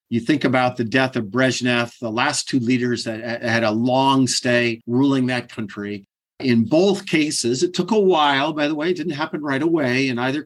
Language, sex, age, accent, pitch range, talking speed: English, male, 50-69, American, 120-150 Hz, 205 wpm